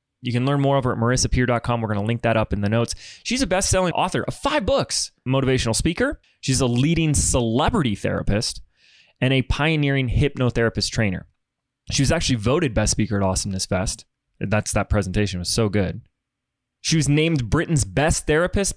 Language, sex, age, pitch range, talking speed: English, male, 20-39, 115-145 Hz, 175 wpm